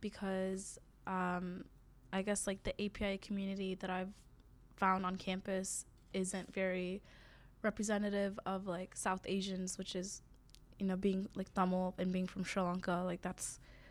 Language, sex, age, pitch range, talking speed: English, female, 10-29, 180-195 Hz, 145 wpm